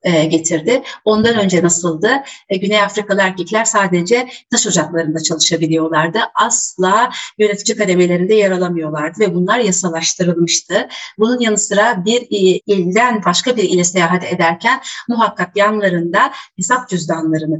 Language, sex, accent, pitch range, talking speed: Turkish, female, native, 180-230 Hz, 115 wpm